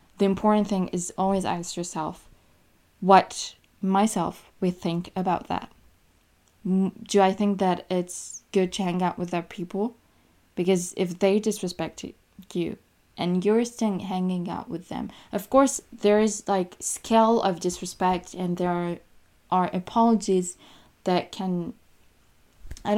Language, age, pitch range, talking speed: French, 20-39, 175-195 Hz, 135 wpm